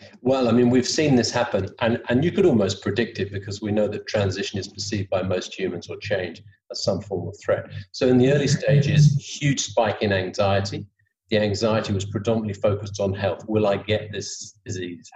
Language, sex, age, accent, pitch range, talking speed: English, male, 40-59, British, 100-115 Hz, 205 wpm